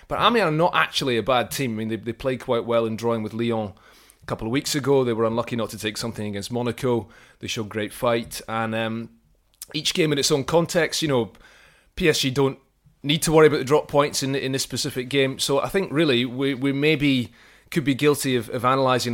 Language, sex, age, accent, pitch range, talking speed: English, male, 30-49, British, 110-135 Hz, 235 wpm